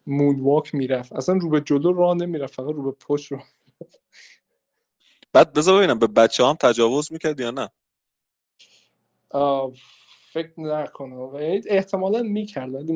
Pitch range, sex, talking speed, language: 140-185 Hz, male, 140 wpm, Persian